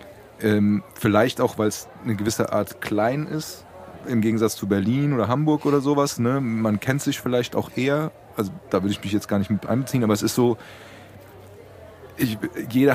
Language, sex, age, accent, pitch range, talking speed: German, male, 30-49, German, 100-120 Hz, 180 wpm